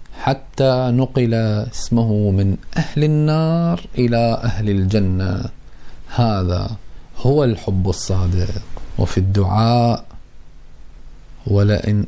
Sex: male